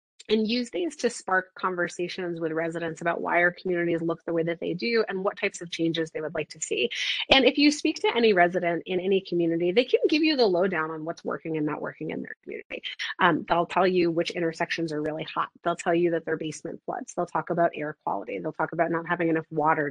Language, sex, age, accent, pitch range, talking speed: English, female, 30-49, American, 165-200 Hz, 245 wpm